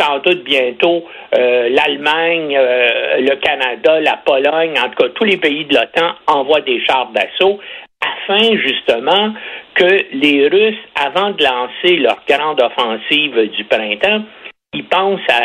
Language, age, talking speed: French, 60-79, 140 wpm